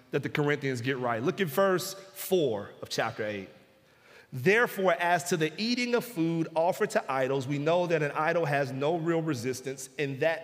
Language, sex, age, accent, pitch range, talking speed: English, male, 40-59, American, 140-185 Hz, 190 wpm